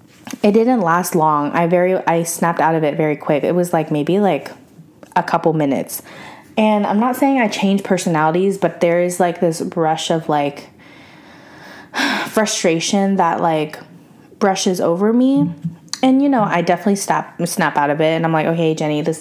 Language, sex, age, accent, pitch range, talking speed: English, female, 20-39, American, 160-195 Hz, 185 wpm